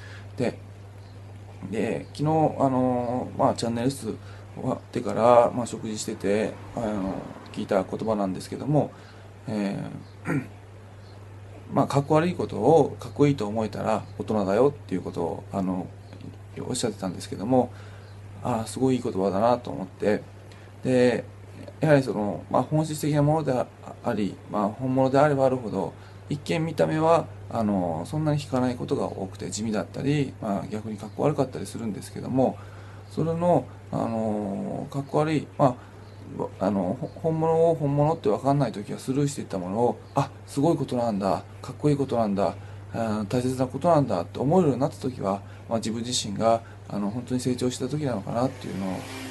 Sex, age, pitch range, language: male, 20-39, 100-135 Hz, Japanese